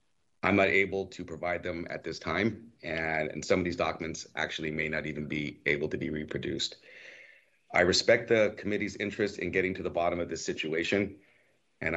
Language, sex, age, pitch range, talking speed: English, male, 30-49, 80-95 Hz, 190 wpm